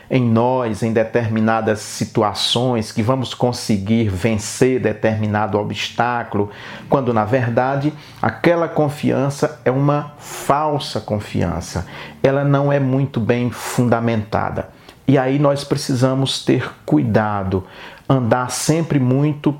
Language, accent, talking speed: Portuguese, Brazilian, 105 wpm